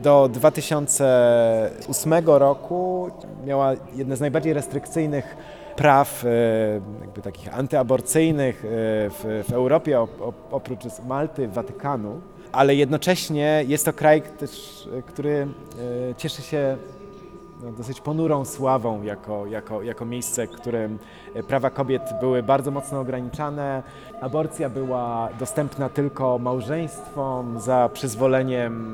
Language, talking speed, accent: Polish, 100 wpm, native